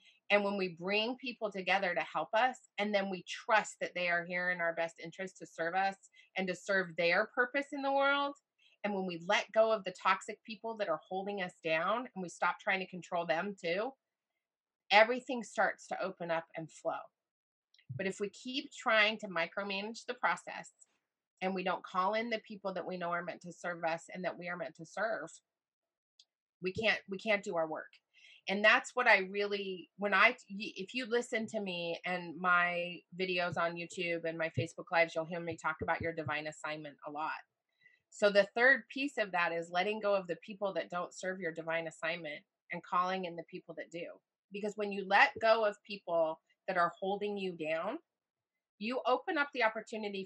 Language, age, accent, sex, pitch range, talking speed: English, 30-49, American, female, 170-215 Hz, 205 wpm